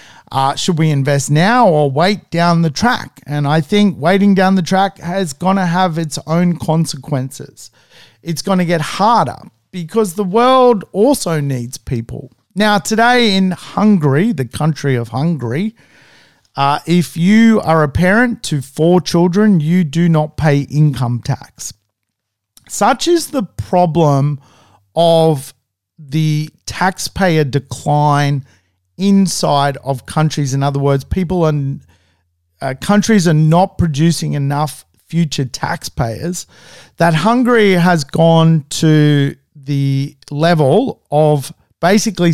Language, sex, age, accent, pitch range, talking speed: English, male, 40-59, Australian, 140-185 Hz, 130 wpm